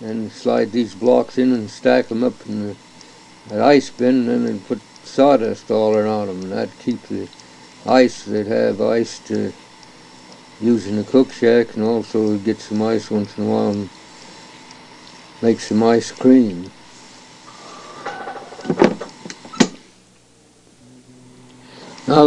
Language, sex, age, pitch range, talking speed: English, male, 60-79, 100-130 Hz, 130 wpm